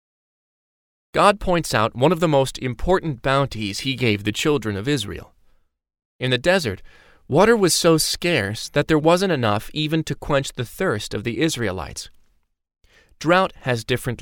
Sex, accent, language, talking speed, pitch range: male, American, English, 155 wpm, 100-135 Hz